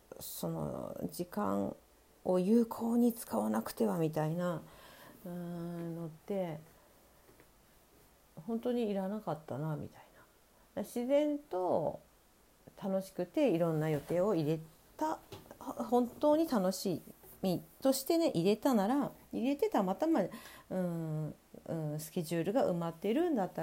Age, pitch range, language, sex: 40-59, 160-270 Hz, Japanese, female